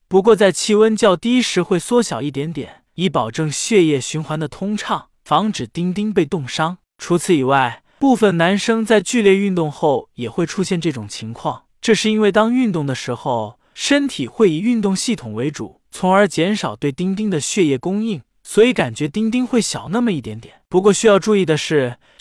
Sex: male